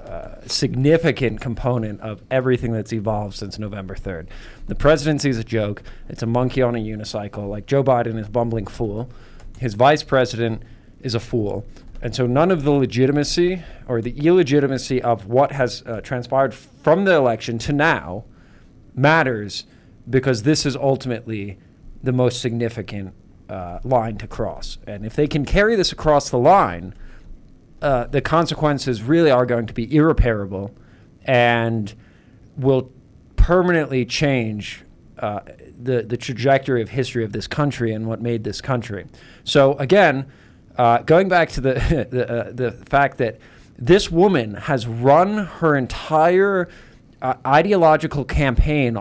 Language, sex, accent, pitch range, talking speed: English, male, American, 110-140 Hz, 150 wpm